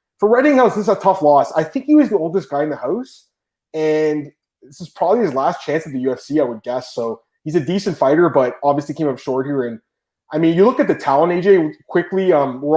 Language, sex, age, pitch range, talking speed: English, male, 20-39, 130-155 Hz, 250 wpm